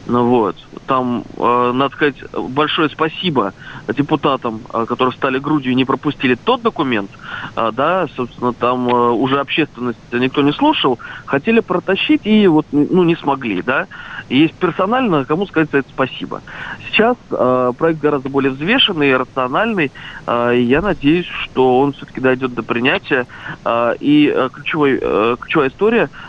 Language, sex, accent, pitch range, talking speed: Russian, male, native, 125-165 Hz, 130 wpm